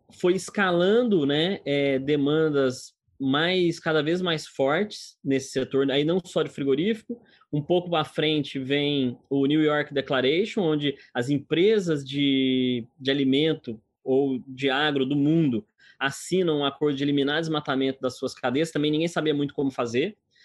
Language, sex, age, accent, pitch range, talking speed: Portuguese, male, 20-39, Brazilian, 135-170 Hz, 155 wpm